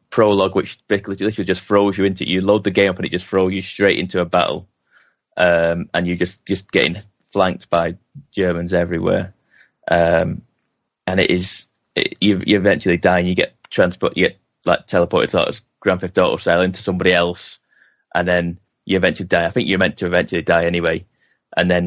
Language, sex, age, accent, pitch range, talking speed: English, male, 20-39, British, 90-100 Hz, 200 wpm